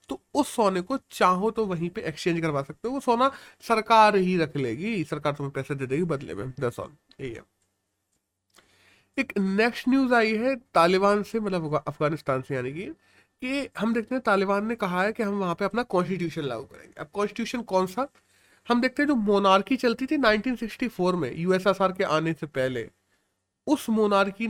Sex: male